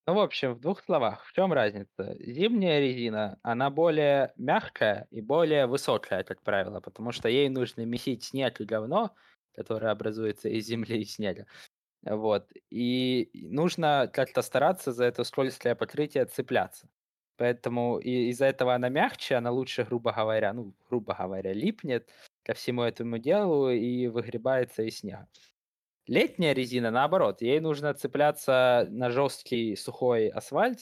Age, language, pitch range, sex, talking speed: 20-39, Ukrainian, 115-145 Hz, male, 145 wpm